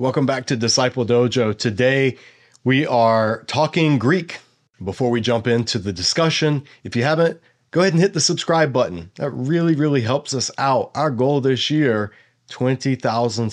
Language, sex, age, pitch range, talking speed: English, male, 30-49, 115-145 Hz, 165 wpm